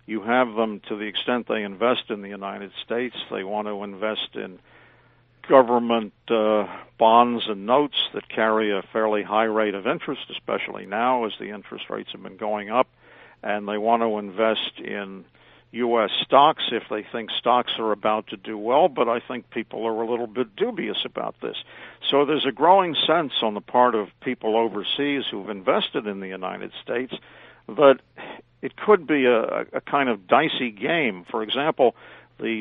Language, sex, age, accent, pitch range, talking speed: English, male, 50-69, American, 105-120 Hz, 180 wpm